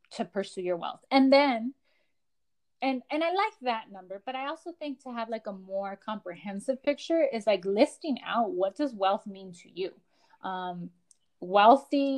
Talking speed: 170 wpm